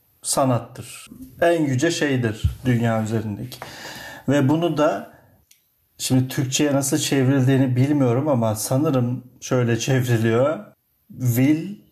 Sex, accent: male, native